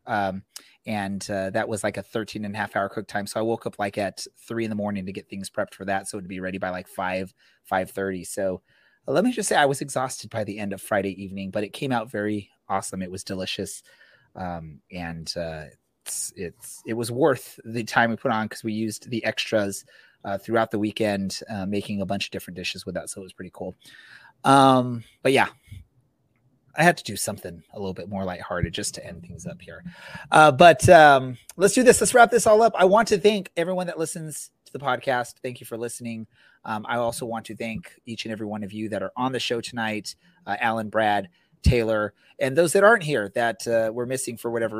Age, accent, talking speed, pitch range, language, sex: 30-49, American, 235 wpm, 100-120 Hz, English, male